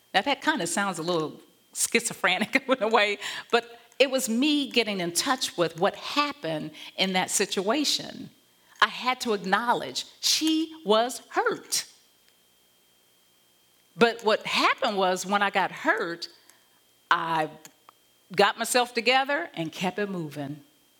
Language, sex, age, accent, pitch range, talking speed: English, female, 50-69, American, 165-235 Hz, 135 wpm